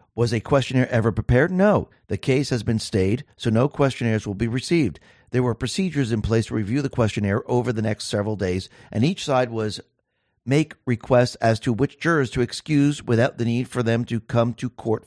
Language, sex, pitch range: English, male, 115-140 Hz